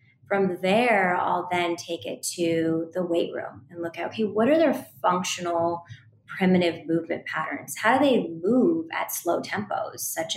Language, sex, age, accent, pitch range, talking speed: English, female, 20-39, American, 155-180 Hz, 170 wpm